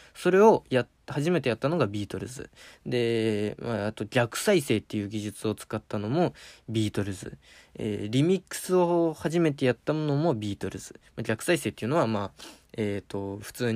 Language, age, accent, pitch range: Japanese, 20-39, native, 105-150 Hz